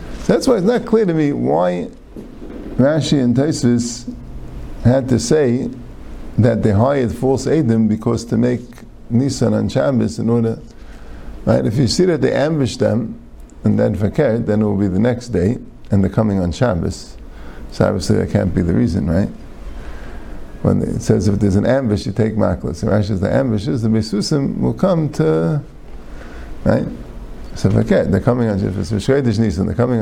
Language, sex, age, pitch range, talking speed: English, male, 50-69, 95-120 Hz, 180 wpm